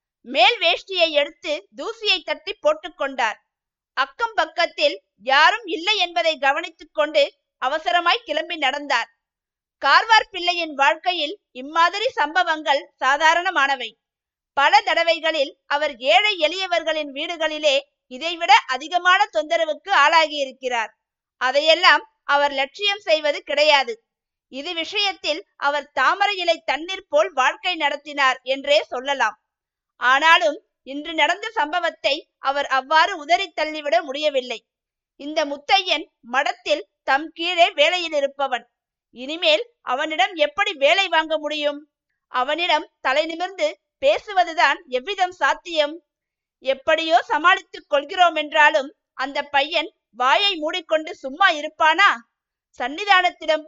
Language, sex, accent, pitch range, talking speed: Tamil, female, native, 285-350 Hz, 95 wpm